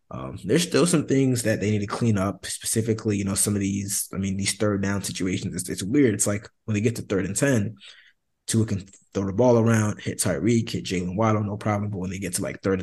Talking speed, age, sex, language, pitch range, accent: 255 wpm, 20-39, male, English, 90-105 Hz, American